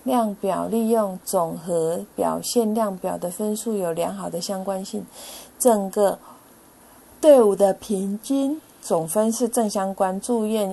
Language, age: Chinese, 30-49